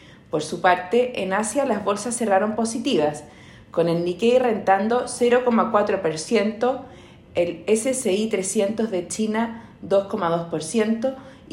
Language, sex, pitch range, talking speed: Spanish, female, 175-235 Hz, 105 wpm